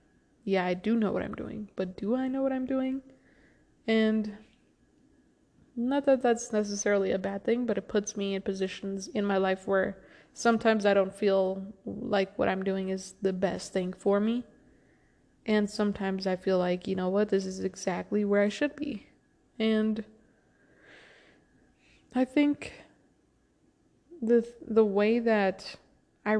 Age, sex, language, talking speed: 20-39, female, English, 155 wpm